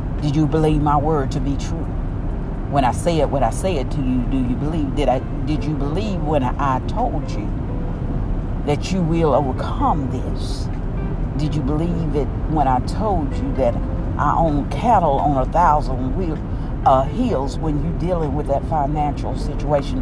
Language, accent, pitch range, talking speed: English, American, 125-160 Hz, 180 wpm